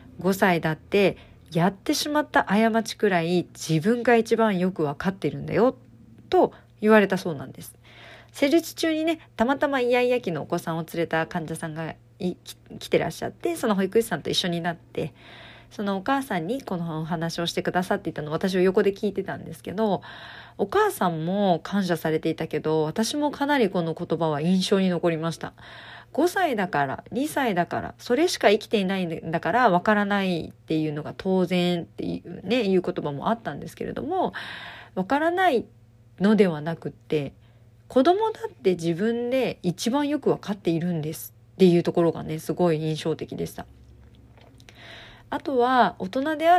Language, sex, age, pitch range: Japanese, female, 40-59, 160-225 Hz